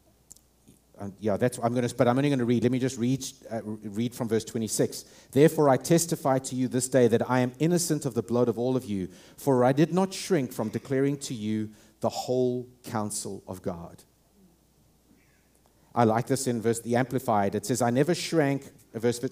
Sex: male